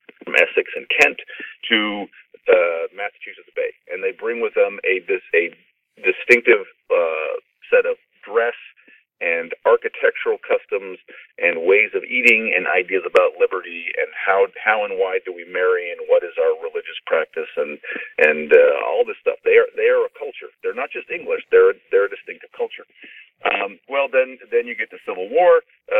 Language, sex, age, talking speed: English, male, 40-59, 180 wpm